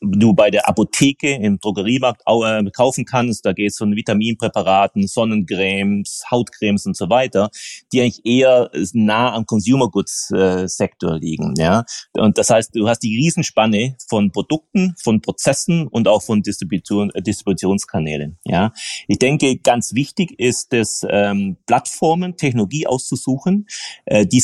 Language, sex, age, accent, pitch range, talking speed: German, male, 30-49, German, 100-125 Hz, 145 wpm